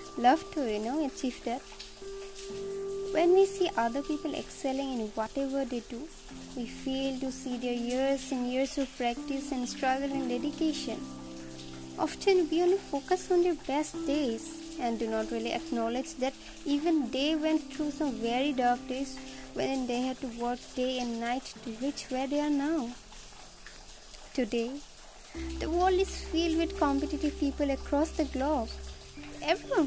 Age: 20-39